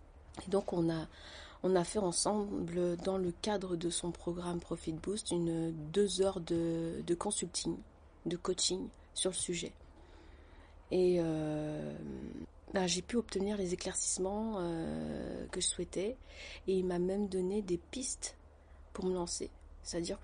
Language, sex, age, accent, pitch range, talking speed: French, female, 30-49, French, 160-195 Hz, 145 wpm